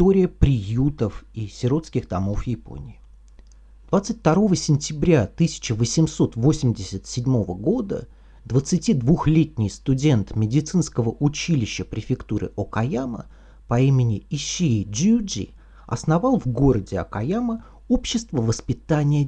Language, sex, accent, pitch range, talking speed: Russian, male, native, 110-165 Hz, 80 wpm